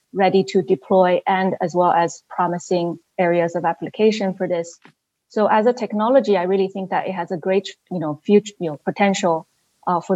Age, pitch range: 20-39, 175-195 Hz